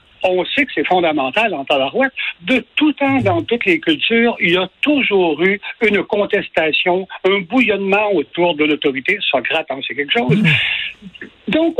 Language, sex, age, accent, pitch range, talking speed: French, male, 60-79, French, 180-270 Hz, 160 wpm